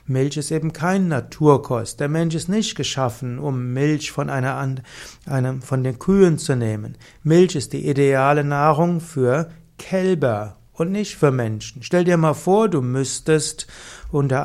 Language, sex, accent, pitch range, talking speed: German, male, German, 130-165 Hz, 155 wpm